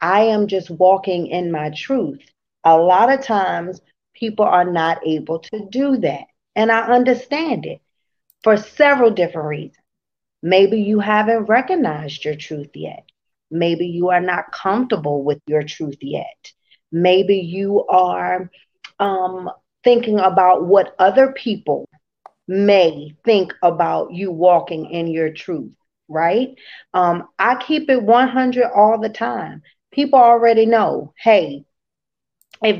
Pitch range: 185-250 Hz